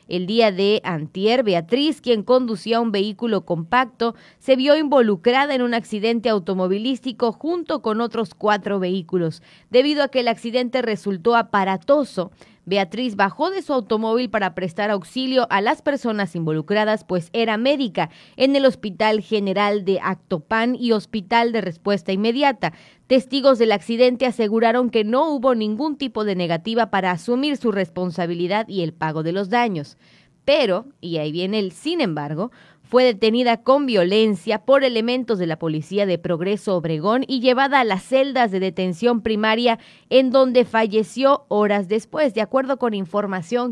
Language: Spanish